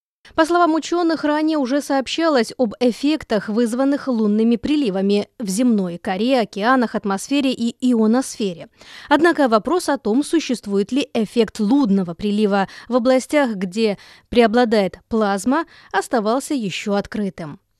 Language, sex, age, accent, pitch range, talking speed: Russian, female, 20-39, native, 215-280 Hz, 120 wpm